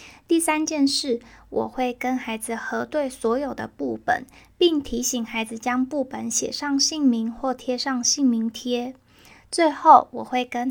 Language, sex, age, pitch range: Chinese, female, 20-39, 240-280 Hz